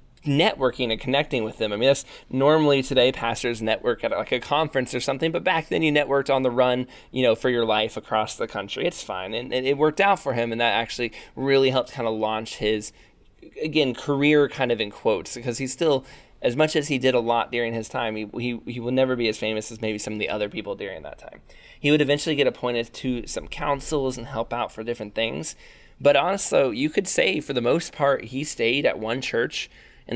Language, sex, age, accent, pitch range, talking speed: English, male, 20-39, American, 115-140 Hz, 235 wpm